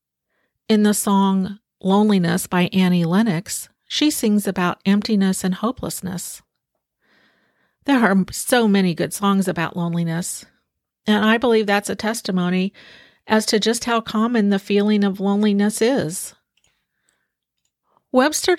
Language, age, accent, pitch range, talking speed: English, 50-69, American, 185-225 Hz, 125 wpm